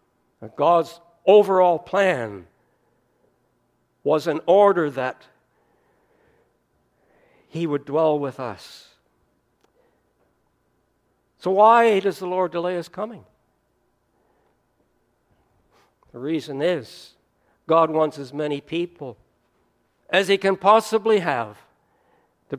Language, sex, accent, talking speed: English, male, American, 90 wpm